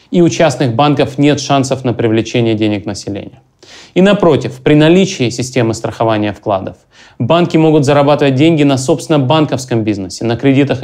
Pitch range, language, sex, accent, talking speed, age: 120-145 Hz, Russian, male, native, 150 wpm, 30-49